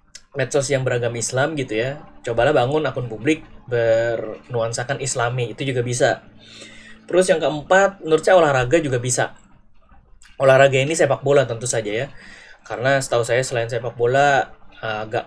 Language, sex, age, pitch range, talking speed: Indonesian, male, 20-39, 115-140 Hz, 140 wpm